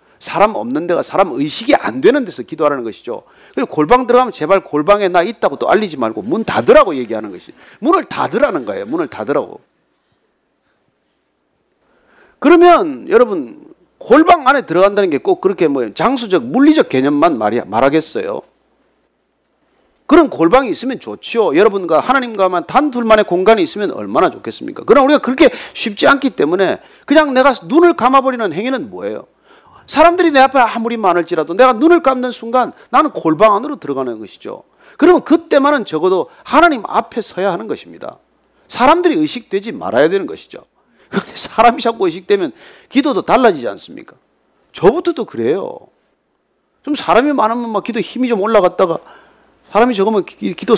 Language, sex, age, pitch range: Korean, male, 40-59, 210-315 Hz